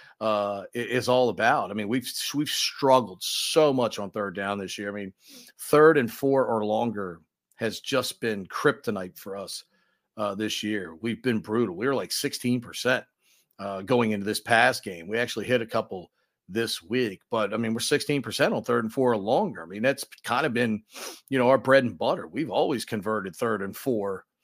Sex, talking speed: male, 200 wpm